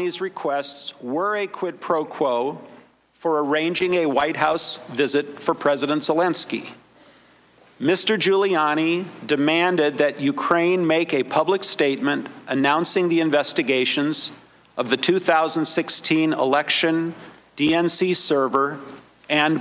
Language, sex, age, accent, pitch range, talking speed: English, male, 50-69, American, 145-175 Hz, 105 wpm